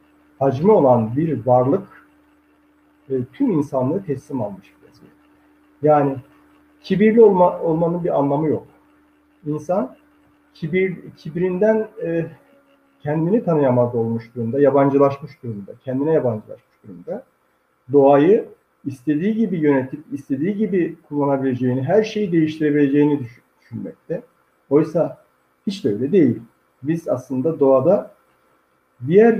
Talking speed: 100 wpm